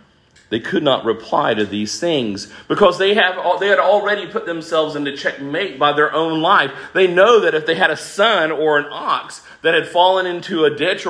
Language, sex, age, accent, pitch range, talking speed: English, male, 40-59, American, 145-195 Hz, 205 wpm